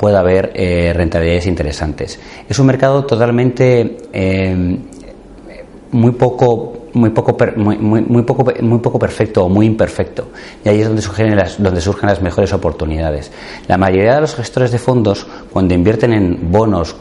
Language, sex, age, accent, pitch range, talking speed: Spanish, male, 40-59, Spanish, 90-110 Hz, 160 wpm